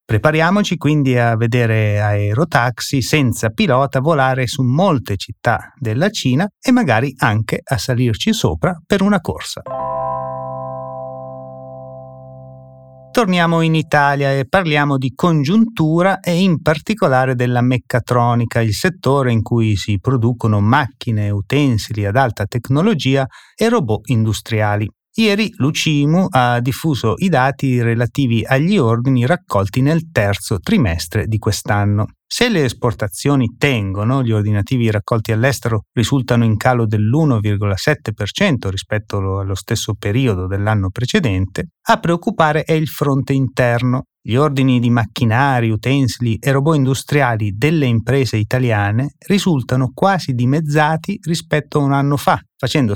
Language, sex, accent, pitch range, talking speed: Italian, male, native, 110-150 Hz, 120 wpm